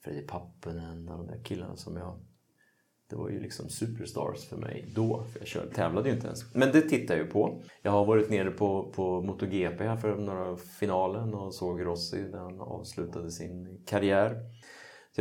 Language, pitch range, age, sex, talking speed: Swedish, 85-110 Hz, 30-49, male, 195 wpm